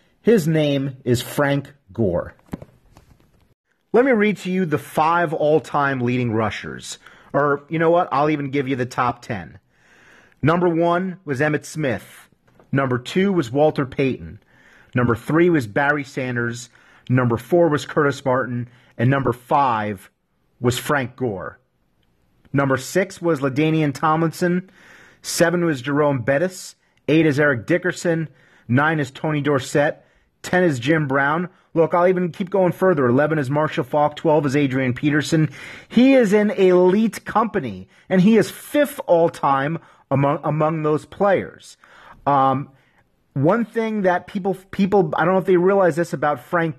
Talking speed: 150 wpm